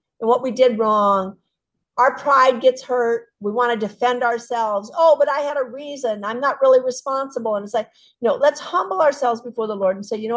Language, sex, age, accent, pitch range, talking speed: English, female, 50-69, American, 220-275 Hz, 220 wpm